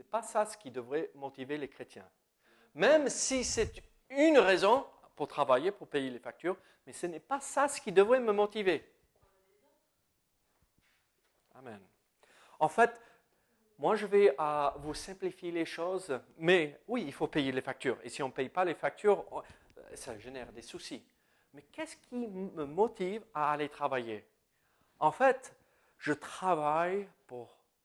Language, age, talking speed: French, 40-59, 155 wpm